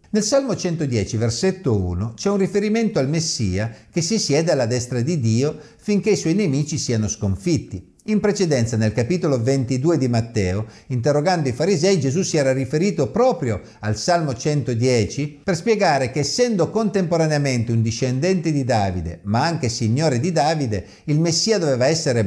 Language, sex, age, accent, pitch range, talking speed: Italian, male, 50-69, native, 115-180 Hz, 160 wpm